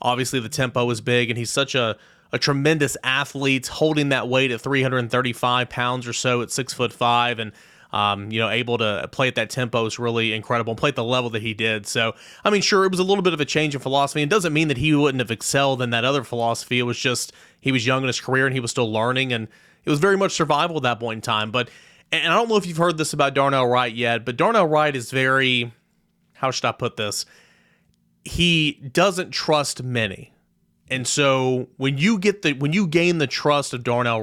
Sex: male